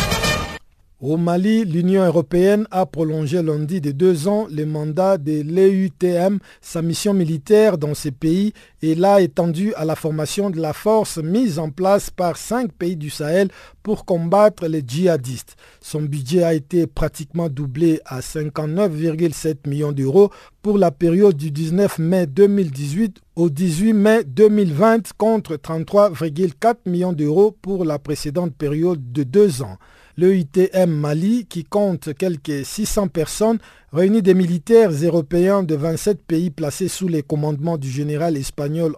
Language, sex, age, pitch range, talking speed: French, male, 50-69, 155-200 Hz, 145 wpm